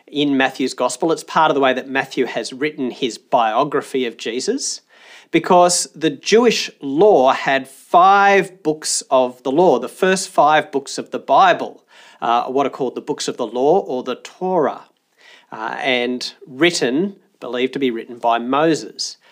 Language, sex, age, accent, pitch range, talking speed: English, male, 40-59, Australian, 130-180 Hz, 170 wpm